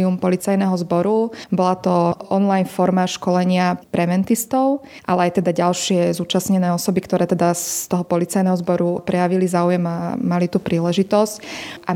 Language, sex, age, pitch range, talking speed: Slovak, female, 20-39, 175-195 Hz, 135 wpm